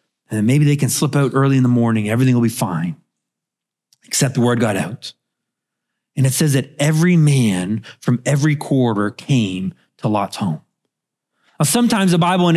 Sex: male